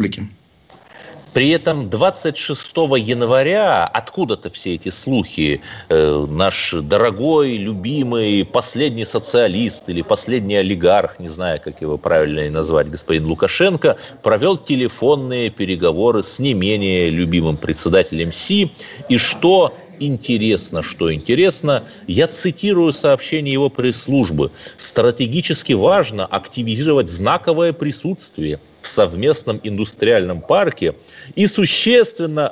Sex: male